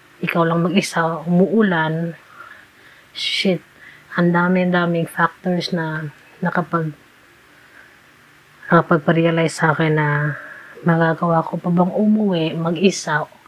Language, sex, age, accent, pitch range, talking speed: Filipino, female, 20-39, native, 160-180 Hz, 95 wpm